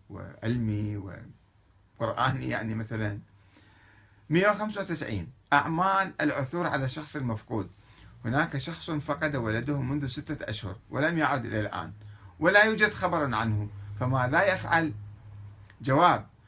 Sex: male